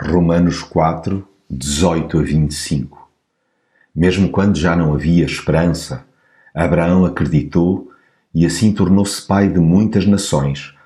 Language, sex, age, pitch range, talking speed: Portuguese, male, 50-69, 85-105 Hz, 100 wpm